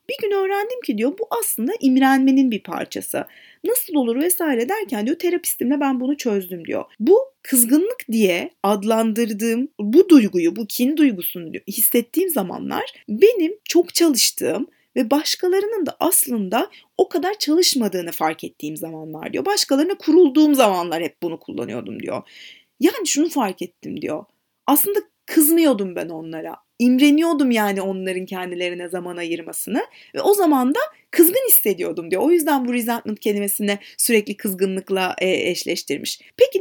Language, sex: Turkish, female